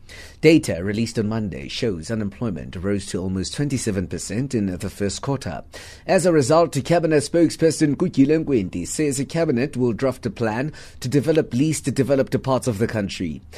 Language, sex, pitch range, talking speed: English, male, 100-140 Hz, 155 wpm